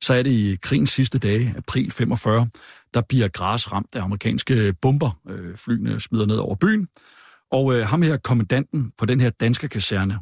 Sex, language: male, Danish